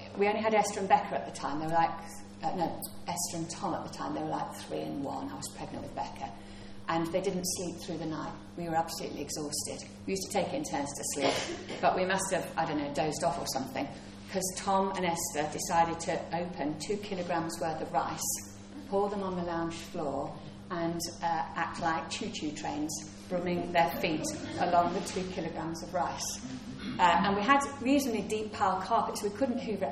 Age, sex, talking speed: 40-59, female, 215 wpm